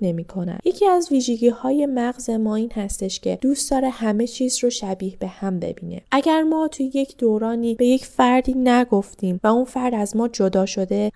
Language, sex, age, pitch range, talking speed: Persian, female, 10-29, 205-255 Hz, 190 wpm